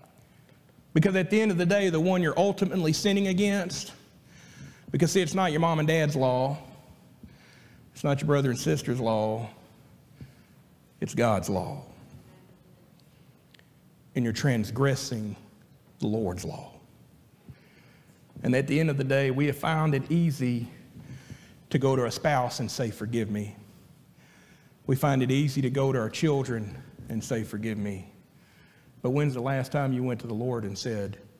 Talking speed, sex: 160 wpm, male